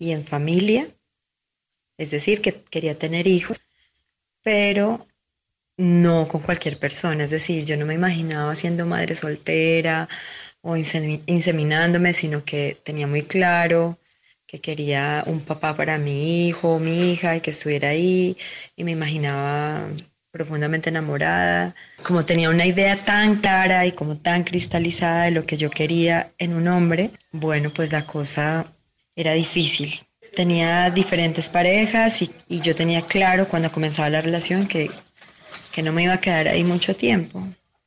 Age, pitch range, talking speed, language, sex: 30-49, 155-180 Hz, 150 wpm, Spanish, female